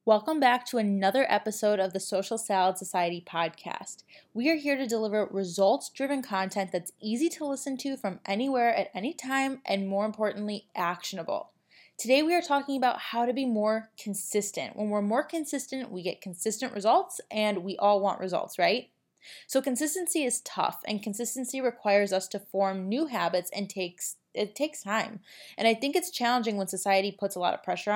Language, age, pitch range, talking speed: English, 20-39, 190-240 Hz, 180 wpm